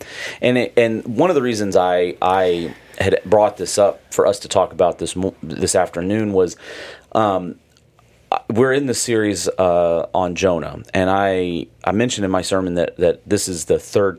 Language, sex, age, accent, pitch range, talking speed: English, male, 40-59, American, 80-105 Hz, 180 wpm